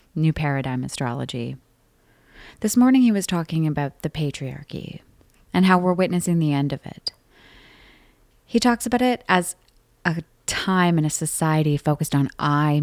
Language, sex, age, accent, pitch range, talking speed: English, female, 30-49, American, 145-175 Hz, 150 wpm